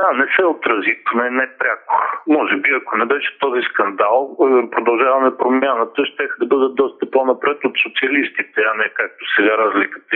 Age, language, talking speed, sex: 50-69, Bulgarian, 170 wpm, male